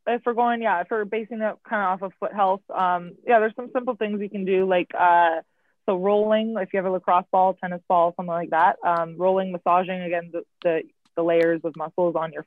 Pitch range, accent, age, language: 170-210 Hz, American, 20-39, English